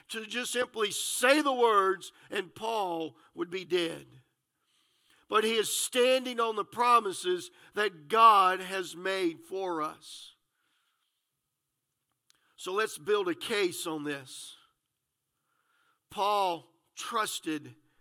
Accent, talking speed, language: American, 110 wpm, English